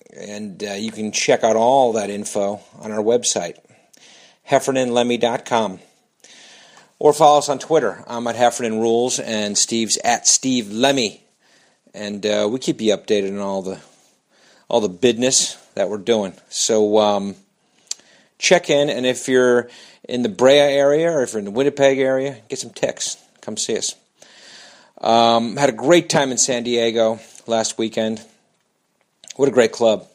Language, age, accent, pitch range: English, 40-59, American, 105-135 Hz